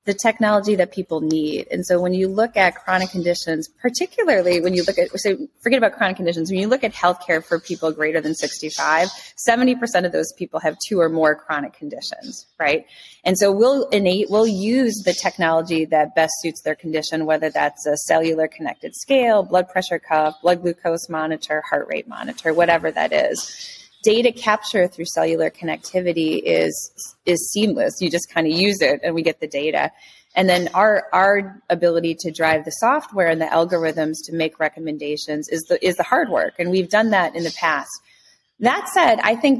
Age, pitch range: 20-39, 165-210 Hz